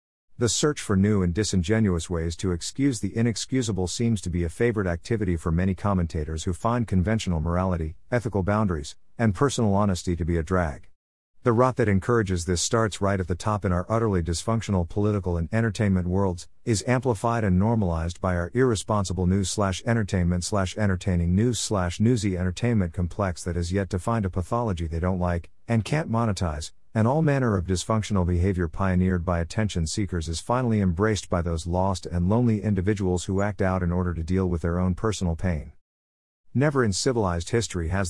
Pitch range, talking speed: 90-110 Hz, 175 wpm